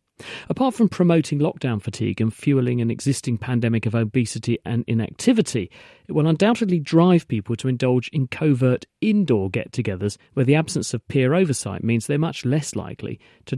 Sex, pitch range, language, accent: male, 110-150 Hz, English, British